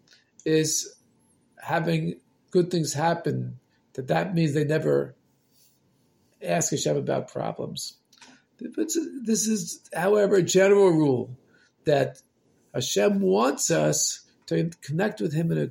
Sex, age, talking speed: male, 50-69, 115 wpm